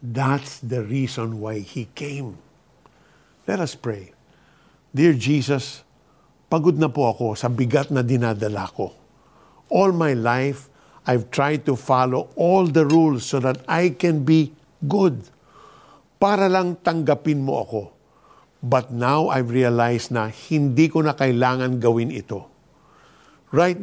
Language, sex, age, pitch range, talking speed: Filipino, male, 50-69, 120-155 Hz, 135 wpm